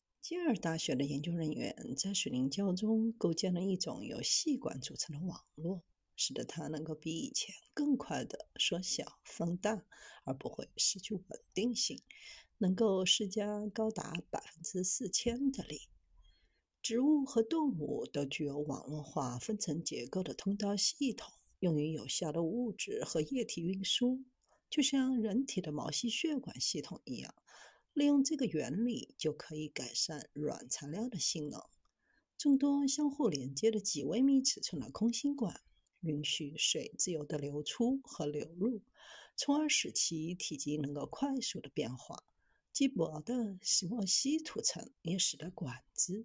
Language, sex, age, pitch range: Chinese, female, 50-69, 160-255 Hz